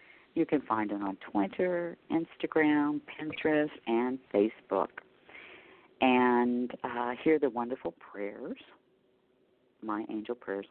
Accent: American